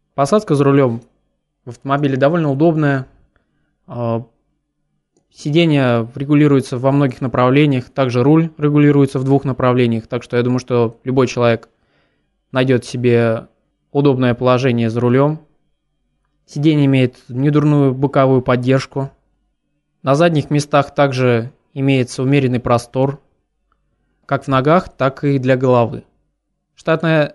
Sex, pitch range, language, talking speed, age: male, 120-145 Hz, Russian, 110 wpm, 20-39